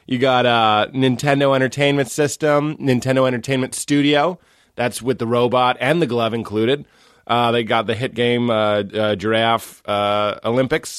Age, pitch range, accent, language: 30-49, 115-155 Hz, American, English